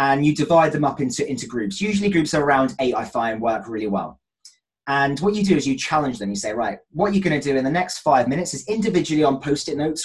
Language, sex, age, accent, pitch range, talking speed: English, male, 20-39, British, 130-165 Hz, 255 wpm